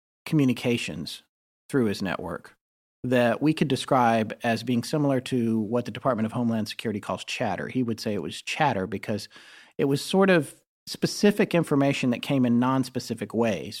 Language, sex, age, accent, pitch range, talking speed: English, male, 40-59, American, 115-150 Hz, 165 wpm